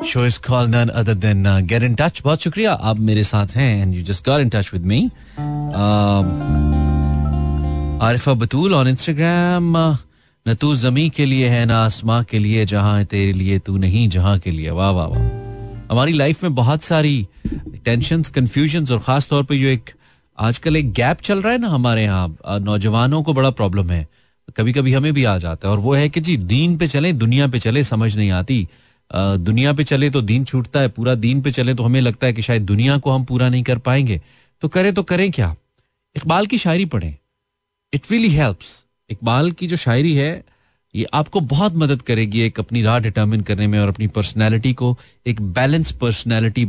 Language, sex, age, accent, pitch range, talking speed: Hindi, male, 30-49, native, 105-140 Hz, 135 wpm